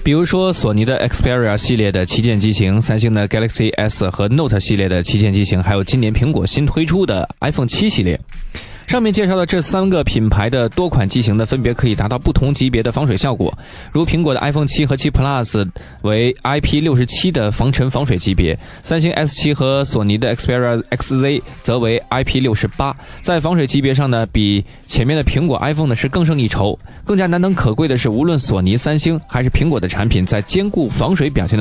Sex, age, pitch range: male, 20-39, 105-145 Hz